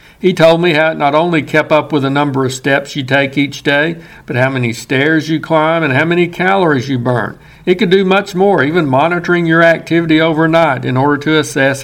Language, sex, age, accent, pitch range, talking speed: English, male, 60-79, American, 145-175 Hz, 225 wpm